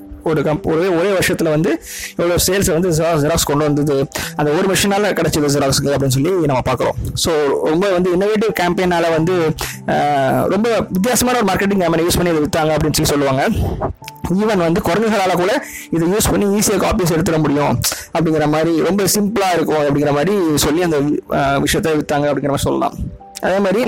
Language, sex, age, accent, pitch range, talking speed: Tamil, male, 20-39, native, 145-185 Hz, 165 wpm